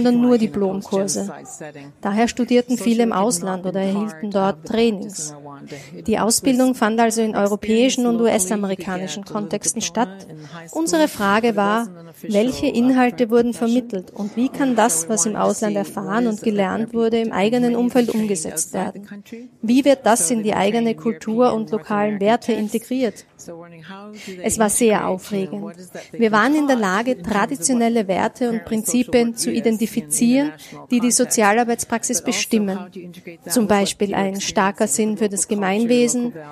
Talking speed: 135 wpm